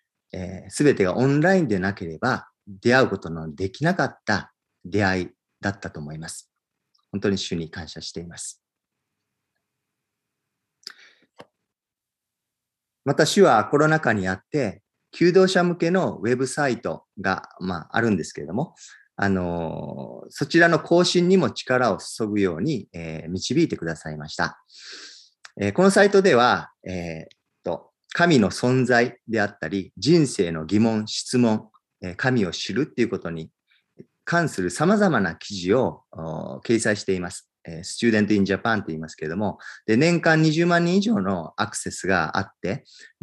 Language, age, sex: Japanese, 40-59, male